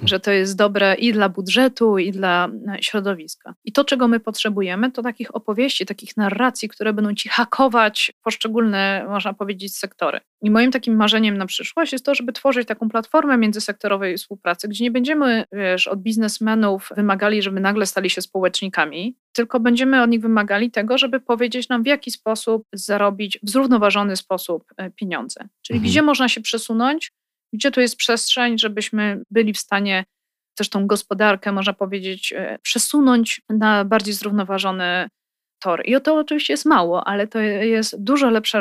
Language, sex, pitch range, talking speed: Polish, female, 200-240 Hz, 160 wpm